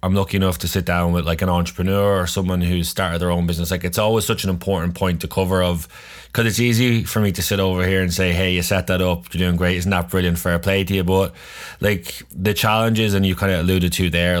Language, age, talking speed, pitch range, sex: English, 20-39, 265 wpm, 90-100 Hz, male